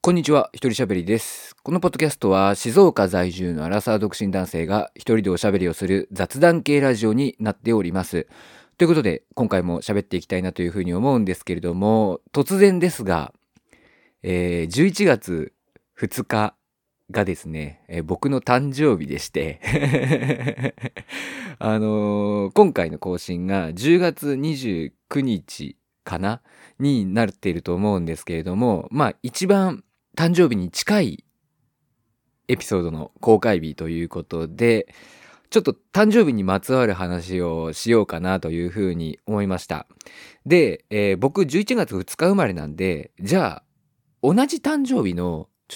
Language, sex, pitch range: Japanese, male, 90-150 Hz